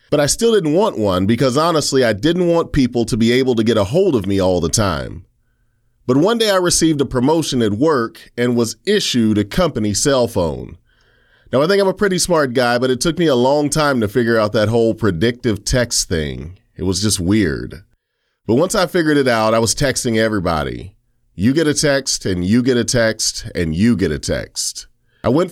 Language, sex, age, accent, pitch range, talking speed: English, male, 30-49, American, 105-140 Hz, 220 wpm